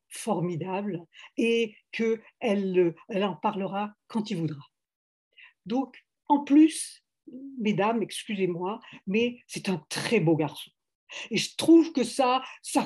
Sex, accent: female, French